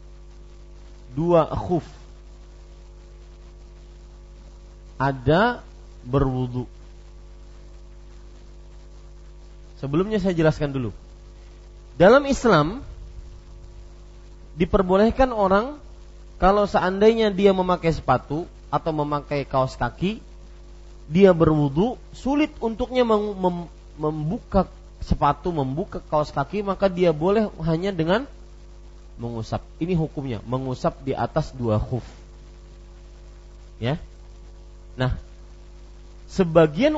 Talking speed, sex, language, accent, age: 80 wpm, male, English, Indonesian, 40-59